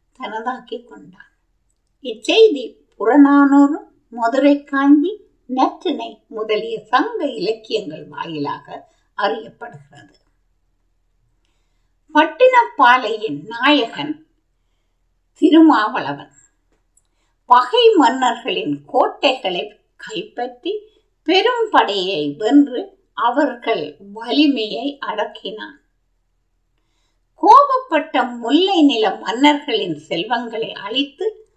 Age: 50-69